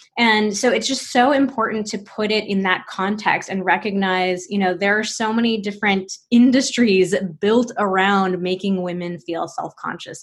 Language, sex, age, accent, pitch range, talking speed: English, female, 20-39, American, 185-230 Hz, 165 wpm